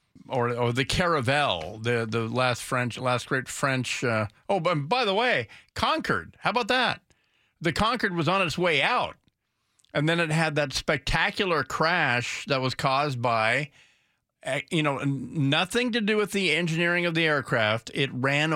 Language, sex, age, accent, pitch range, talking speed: English, male, 50-69, American, 125-165 Hz, 170 wpm